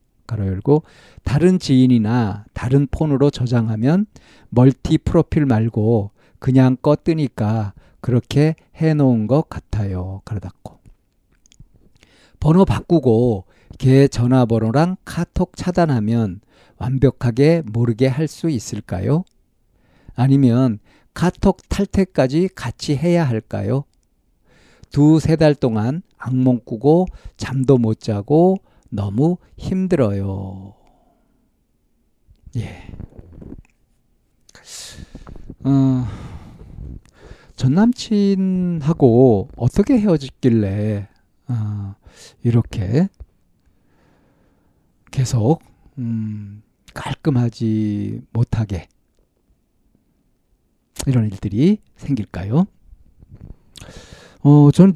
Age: 50-69